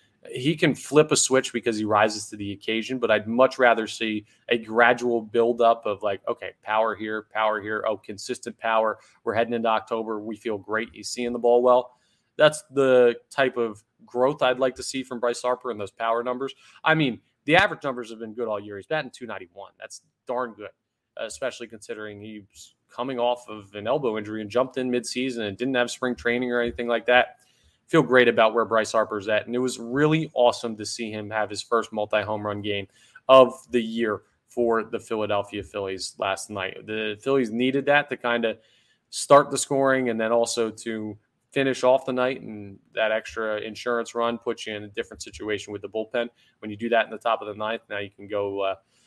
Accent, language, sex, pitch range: American, English, male, 110-125 Hz